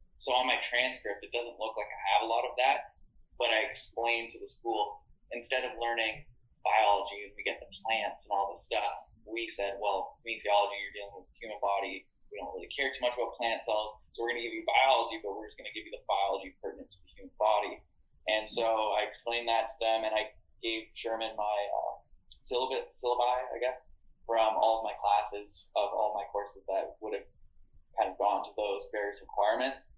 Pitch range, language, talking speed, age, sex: 100-120 Hz, English, 215 wpm, 20-39, male